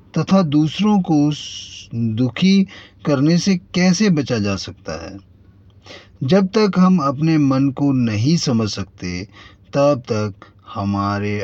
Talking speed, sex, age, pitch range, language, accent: 120 wpm, male, 30-49, 95-135 Hz, Hindi, native